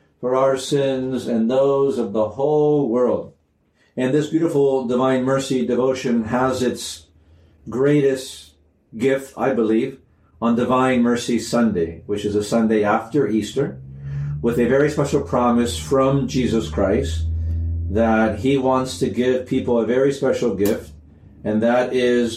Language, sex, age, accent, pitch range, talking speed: English, male, 50-69, American, 115-140 Hz, 140 wpm